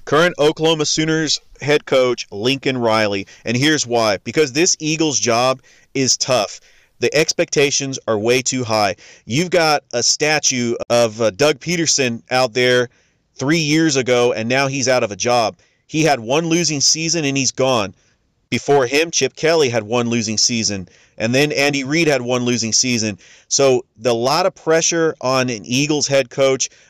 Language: English